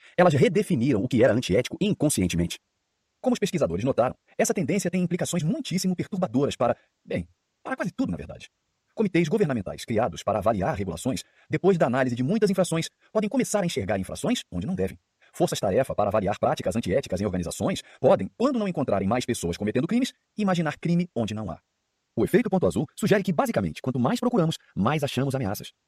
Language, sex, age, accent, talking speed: Portuguese, male, 40-59, Brazilian, 180 wpm